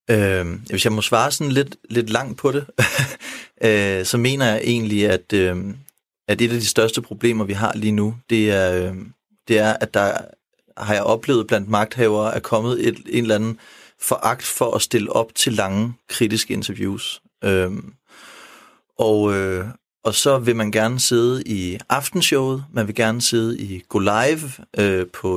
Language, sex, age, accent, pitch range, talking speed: Danish, male, 30-49, native, 105-120 Hz, 175 wpm